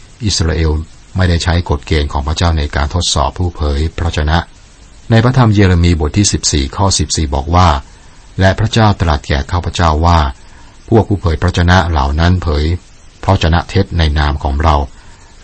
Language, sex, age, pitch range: Thai, male, 60-79, 75-95 Hz